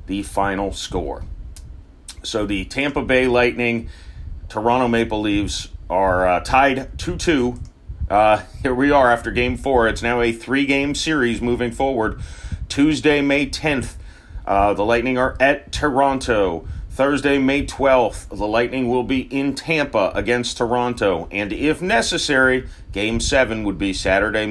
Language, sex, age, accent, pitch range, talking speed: English, male, 30-49, American, 95-130 Hz, 135 wpm